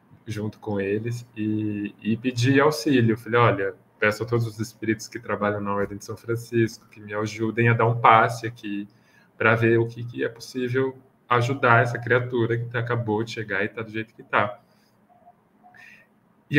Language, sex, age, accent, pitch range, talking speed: Portuguese, male, 20-39, Brazilian, 105-120 Hz, 175 wpm